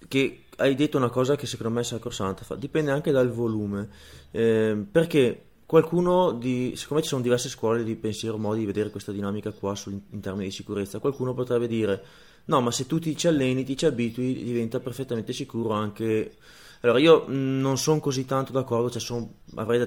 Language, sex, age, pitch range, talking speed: Italian, male, 20-39, 110-135 Hz, 185 wpm